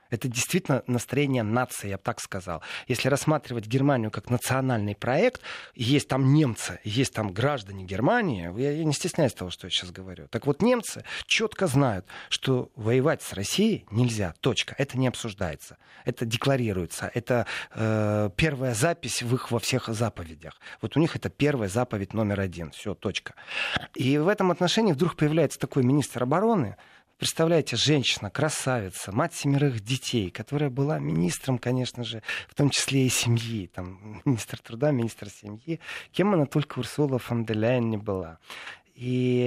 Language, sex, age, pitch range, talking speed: Russian, male, 30-49, 110-145 Hz, 155 wpm